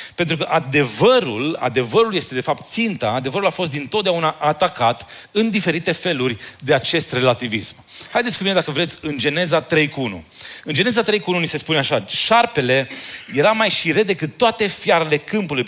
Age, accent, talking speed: 30-49, native, 170 wpm